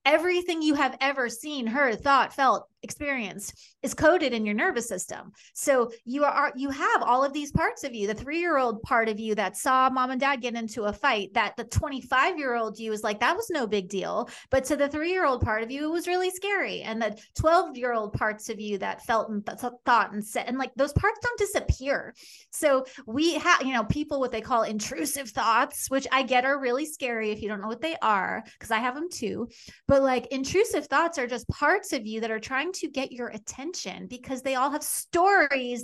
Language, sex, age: English, female, 30-49